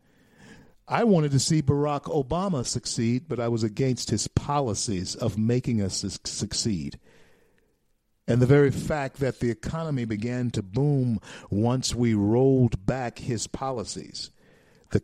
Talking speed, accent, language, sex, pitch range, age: 135 wpm, American, English, male, 115-150 Hz, 50-69